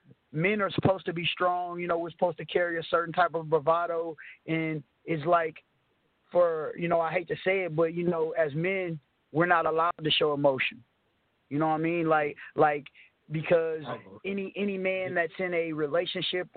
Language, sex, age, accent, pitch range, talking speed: English, male, 20-39, American, 155-180 Hz, 195 wpm